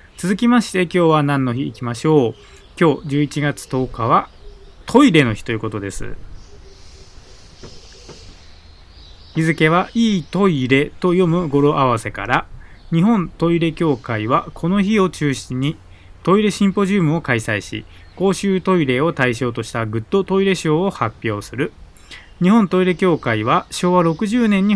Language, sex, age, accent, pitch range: Japanese, male, 20-39, native, 115-180 Hz